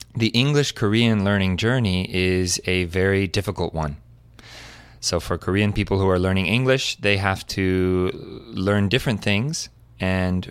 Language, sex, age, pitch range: Korean, male, 30-49, 95-115 Hz